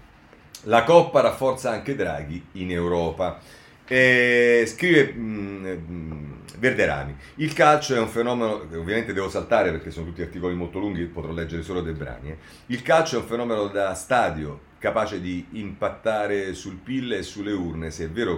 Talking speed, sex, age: 165 wpm, male, 40-59